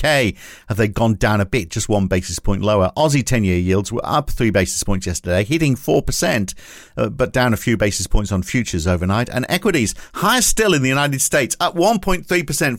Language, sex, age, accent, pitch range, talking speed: English, male, 50-69, British, 100-135 Hz, 195 wpm